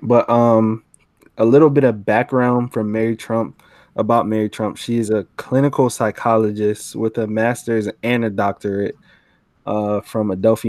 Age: 20-39